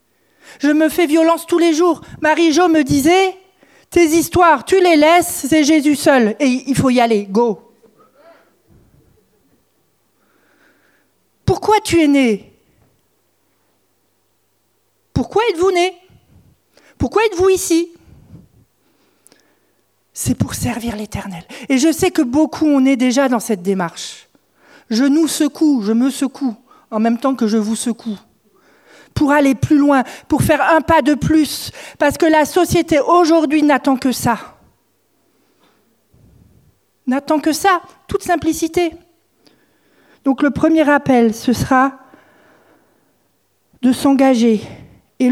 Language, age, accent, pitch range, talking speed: French, 50-69, French, 255-330 Hz, 125 wpm